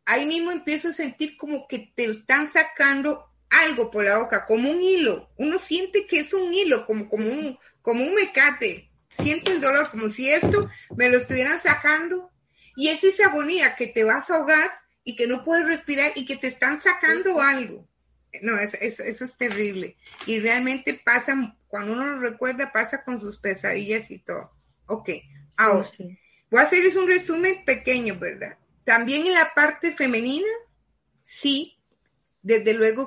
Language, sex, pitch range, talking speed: Spanish, female, 220-310 Hz, 170 wpm